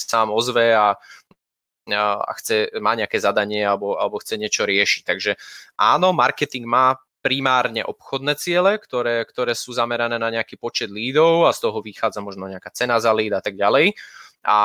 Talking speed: 170 wpm